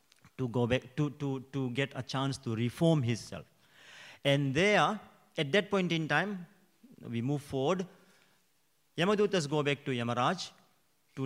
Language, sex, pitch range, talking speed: English, male, 130-170 Hz, 150 wpm